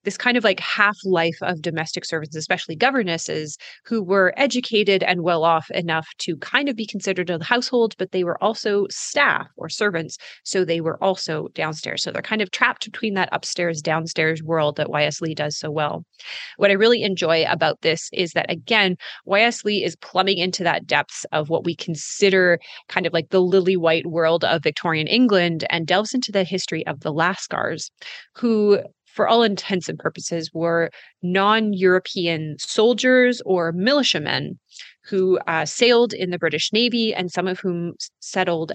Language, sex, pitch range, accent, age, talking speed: English, female, 165-220 Hz, American, 30-49, 170 wpm